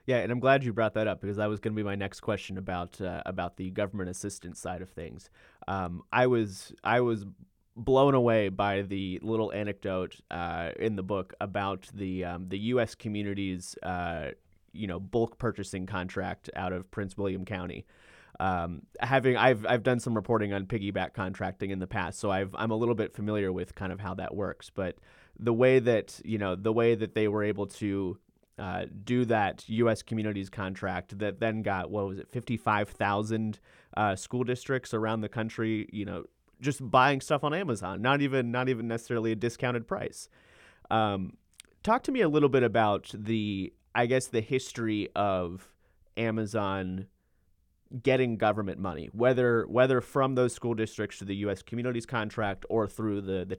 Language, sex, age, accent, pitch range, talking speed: English, male, 30-49, American, 95-115 Hz, 185 wpm